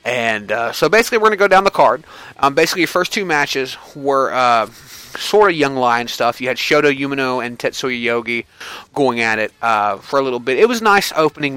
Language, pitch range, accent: English, 120-150 Hz, American